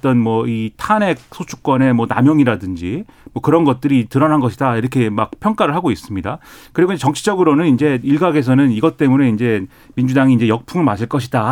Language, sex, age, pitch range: Korean, male, 30-49, 120-165 Hz